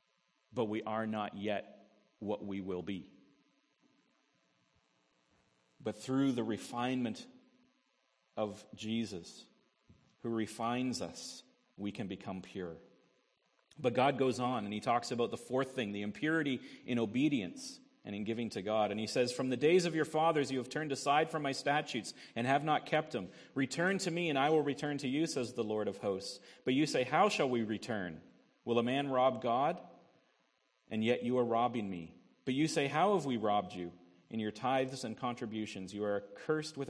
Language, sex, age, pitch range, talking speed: English, male, 40-59, 105-145 Hz, 180 wpm